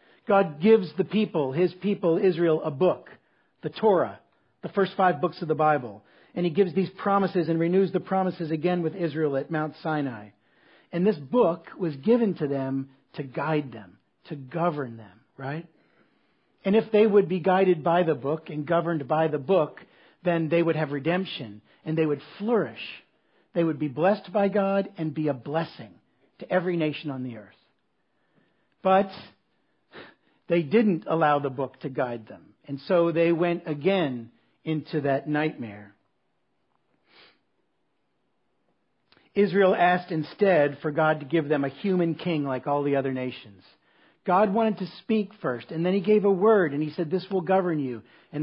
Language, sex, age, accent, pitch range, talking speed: English, male, 50-69, American, 145-185 Hz, 170 wpm